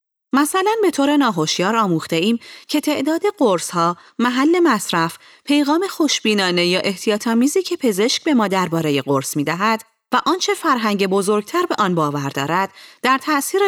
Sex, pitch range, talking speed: female, 175-280 Hz, 140 wpm